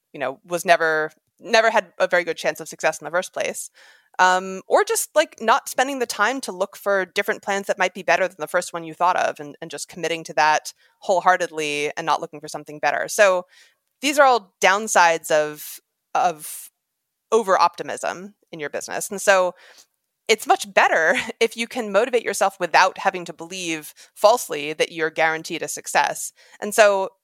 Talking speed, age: 190 wpm, 30-49